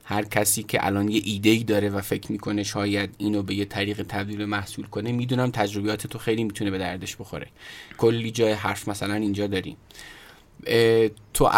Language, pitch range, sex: Persian, 105-125 Hz, male